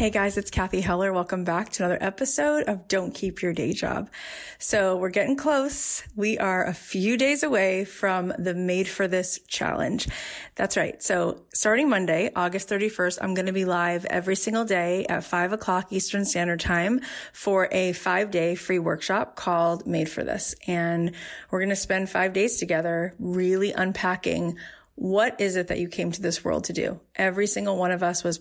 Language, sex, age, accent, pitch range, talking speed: English, female, 30-49, American, 170-195 Hz, 190 wpm